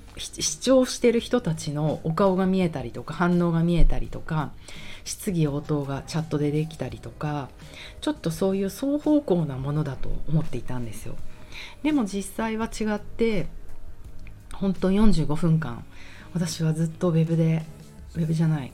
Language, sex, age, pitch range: Japanese, female, 40-59, 145-190 Hz